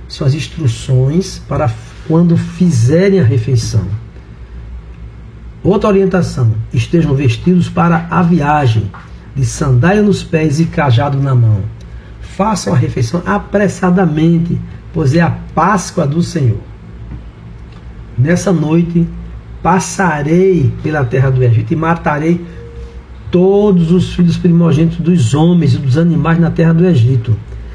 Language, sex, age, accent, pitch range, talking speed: Portuguese, male, 60-79, Brazilian, 115-170 Hz, 115 wpm